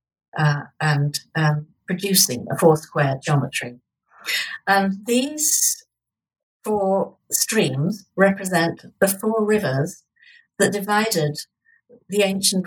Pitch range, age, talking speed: 150-200 Hz, 60-79, 90 wpm